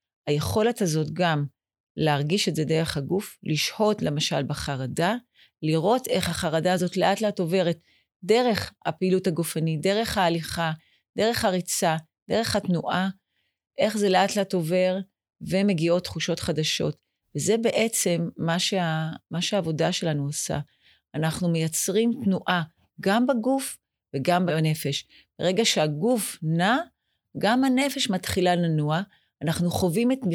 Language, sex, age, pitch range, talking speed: Hebrew, female, 40-59, 160-195 Hz, 115 wpm